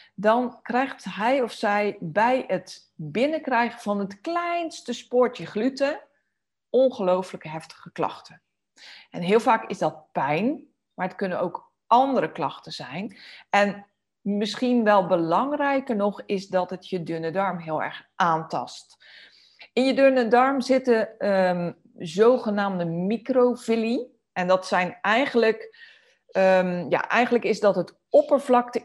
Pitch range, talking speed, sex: 185-240 Hz, 125 wpm, female